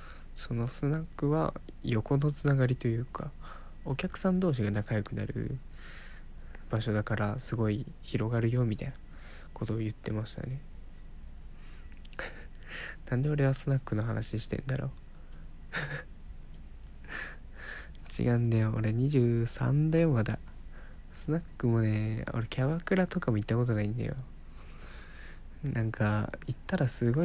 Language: Japanese